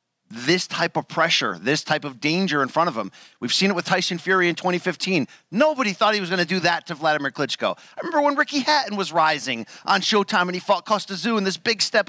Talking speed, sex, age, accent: 245 wpm, male, 40-59, American